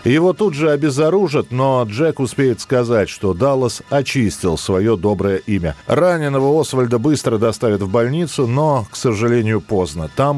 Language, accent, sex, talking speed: Russian, native, male, 145 wpm